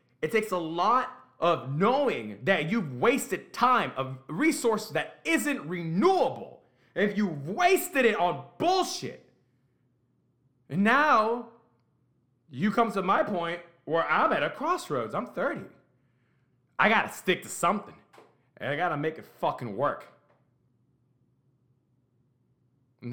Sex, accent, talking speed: male, American, 130 wpm